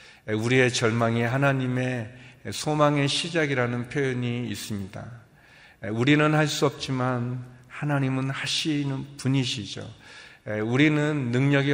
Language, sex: Korean, male